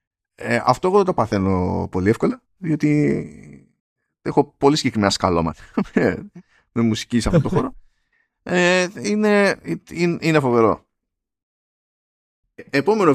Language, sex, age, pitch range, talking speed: Greek, male, 20-39, 110-155 Hz, 115 wpm